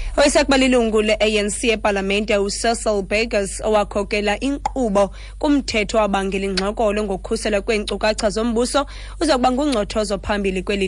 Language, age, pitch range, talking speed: English, 20-39, 200-240 Hz, 150 wpm